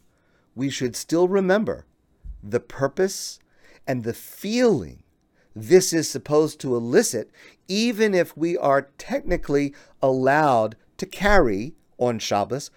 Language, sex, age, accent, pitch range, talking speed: English, male, 50-69, American, 110-155 Hz, 115 wpm